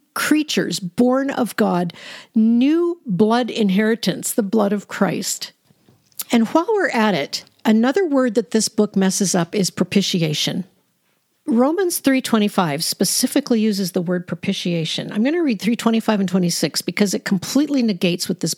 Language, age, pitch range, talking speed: English, 50-69, 190-255 Hz, 145 wpm